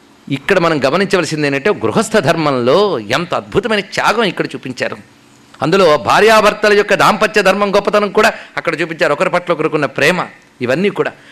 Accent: native